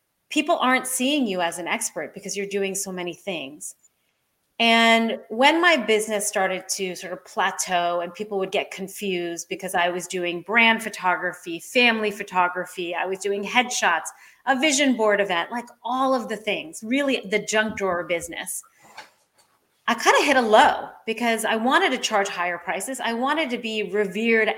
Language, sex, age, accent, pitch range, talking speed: English, female, 30-49, American, 190-240 Hz, 175 wpm